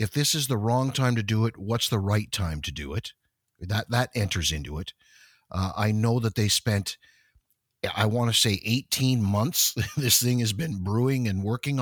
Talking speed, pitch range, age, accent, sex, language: 205 wpm, 95-125 Hz, 50-69, American, male, English